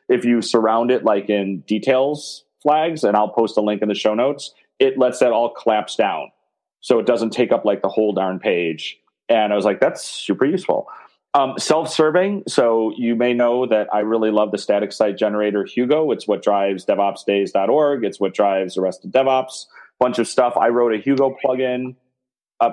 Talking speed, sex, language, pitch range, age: 200 wpm, male, English, 105-130 Hz, 30-49